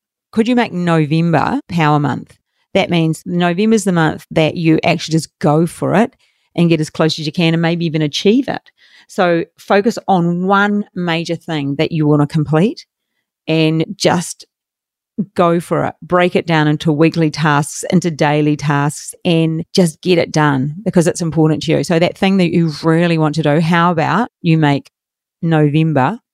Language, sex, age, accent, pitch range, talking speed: English, female, 40-59, Australian, 155-205 Hz, 180 wpm